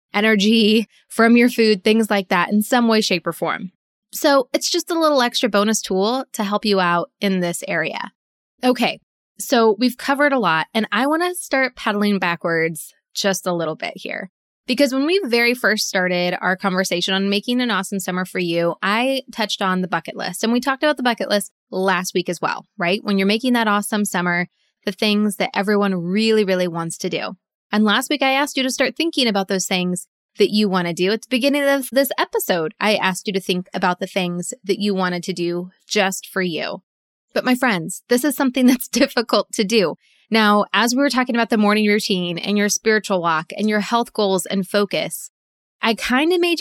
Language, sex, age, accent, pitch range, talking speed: English, female, 20-39, American, 190-245 Hz, 215 wpm